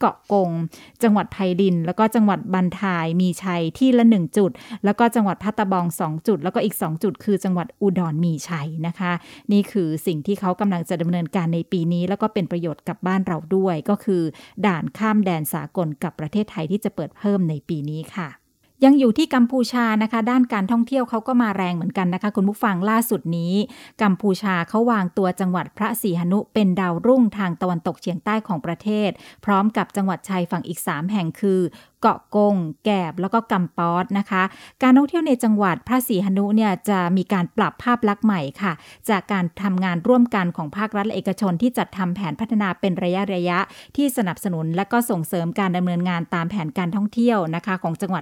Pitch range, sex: 175-215 Hz, female